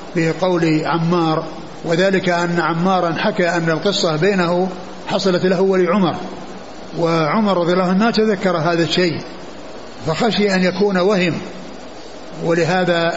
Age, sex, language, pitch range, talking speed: 60-79, male, Arabic, 165-185 Hz, 110 wpm